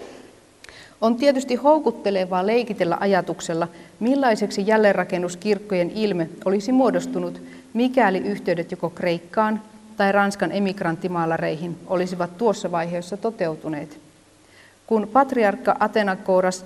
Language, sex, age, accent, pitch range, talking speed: Finnish, female, 30-49, native, 175-210 Hz, 85 wpm